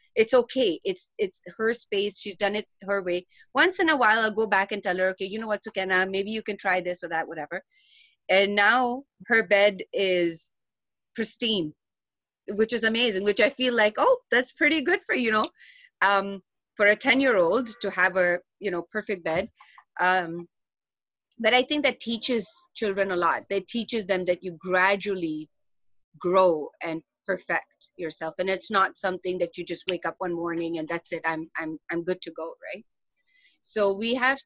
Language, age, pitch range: English, 30-49, 175-225 Hz